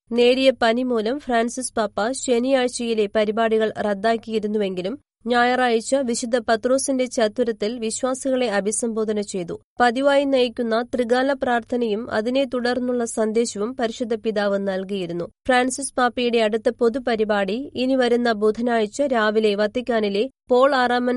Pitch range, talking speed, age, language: 215-250 Hz, 100 wpm, 30-49, Malayalam